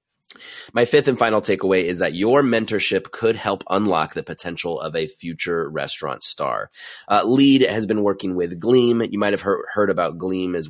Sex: male